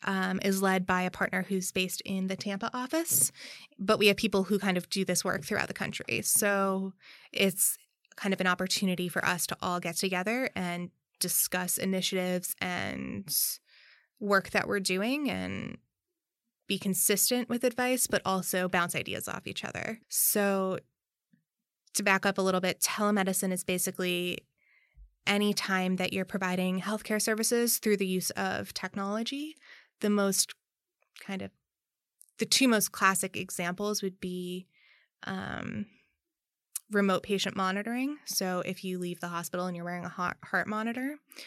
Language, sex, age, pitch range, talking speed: English, female, 20-39, 185-215 Hz, 155 wpm